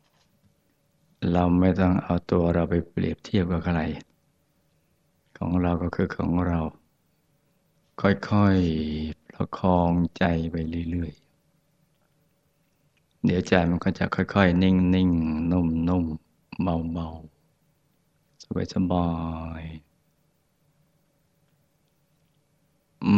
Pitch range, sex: 85-95 Hz, male